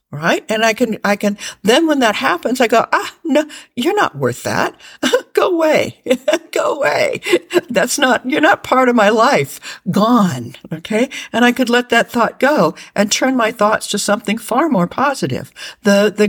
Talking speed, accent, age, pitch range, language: 185 wpm, American, 60-79, 180-250 Hz, English